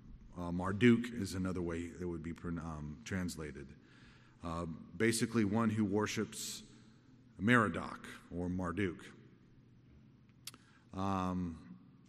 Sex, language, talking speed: male, English, 95 wpm